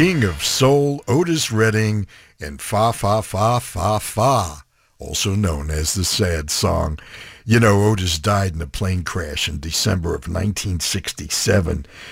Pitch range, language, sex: 85-110 Hz, English, male